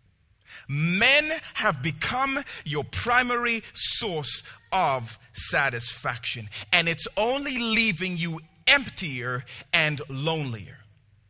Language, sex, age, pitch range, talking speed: English, male, 40-59, 115-185 Hz, 85 wpm